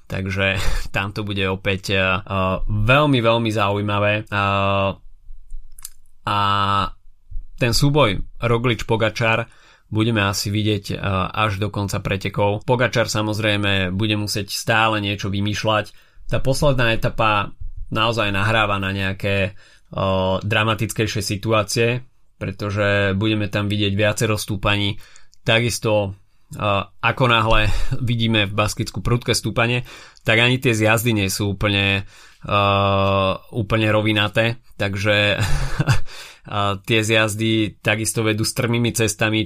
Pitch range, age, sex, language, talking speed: 100-115 Hz, 20-39, male, Slovak, 110 wpm